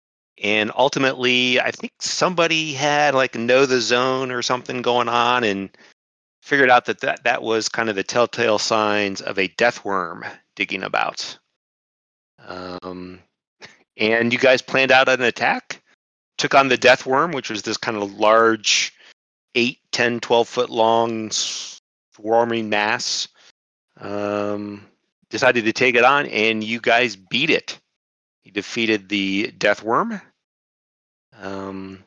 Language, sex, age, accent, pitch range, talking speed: English, male, 30-49, American, 100-130 Hz, 140 wpm